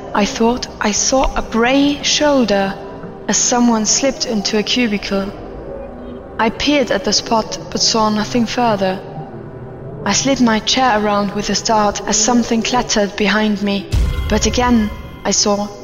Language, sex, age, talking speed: English, female, 20-39, 150 wpm